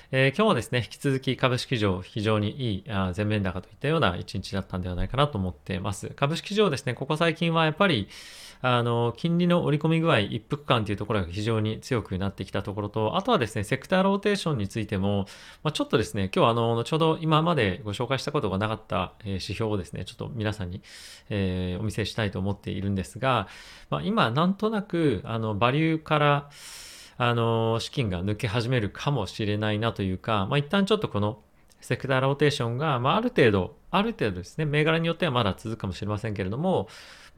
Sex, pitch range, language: male, 100-140 Hz, Japanese